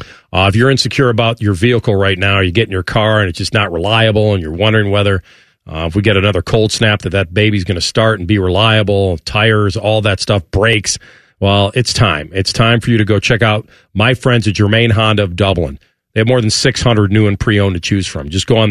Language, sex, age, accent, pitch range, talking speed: English, male, 40-59, American, 95-115 Hz, 245 wpm